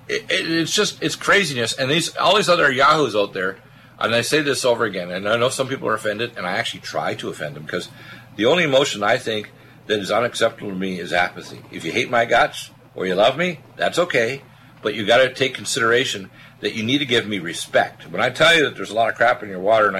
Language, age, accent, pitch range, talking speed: English, 50-69, American, 105-140 Hz, 250 wpm